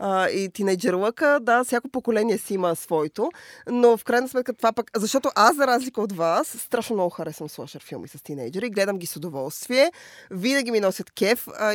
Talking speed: 195 wpm